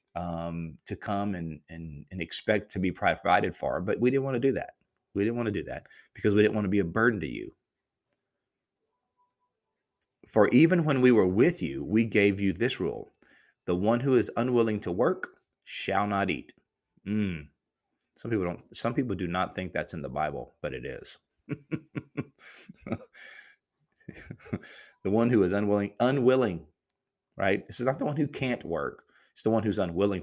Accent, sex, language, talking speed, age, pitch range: American, male, English, 185 wpm, 30-49, 90-115 Hz